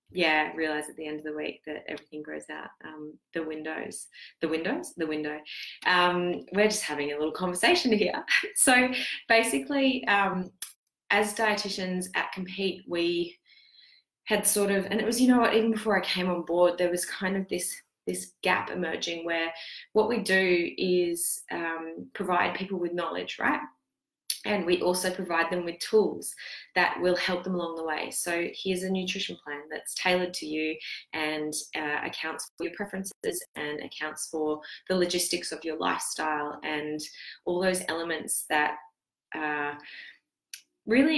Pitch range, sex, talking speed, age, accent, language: 155-190 Hz, female, 165 wpm, 20-39, Australian, English